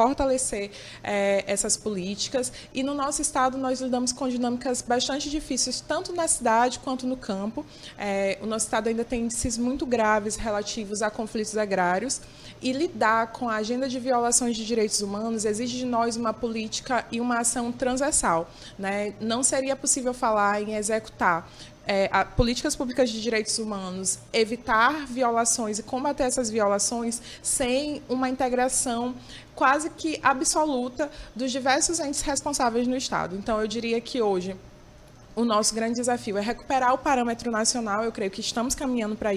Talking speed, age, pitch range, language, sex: 160 wpm, 20-39, 215-260 Hz, Portuguese, female